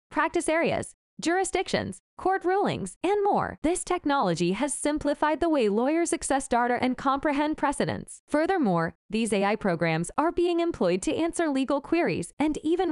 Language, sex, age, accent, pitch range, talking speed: English, female, 10-29, American, 240-330 Hz, 150 wpm